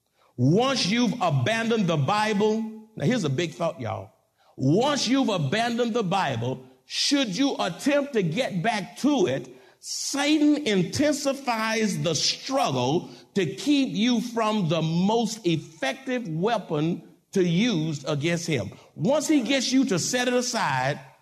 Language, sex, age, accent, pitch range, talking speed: English, male, 50-69, American, 150-230 Hz, 135 wpm